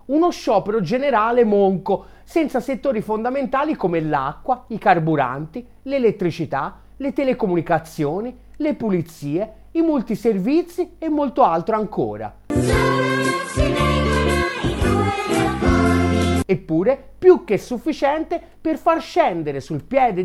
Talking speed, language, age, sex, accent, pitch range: 90 wpm, Italian, 40-59, male, native, 165-270 Hz